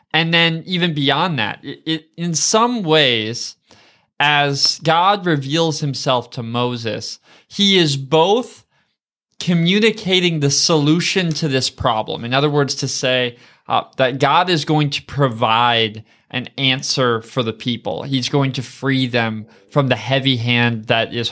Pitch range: 130-165 Hz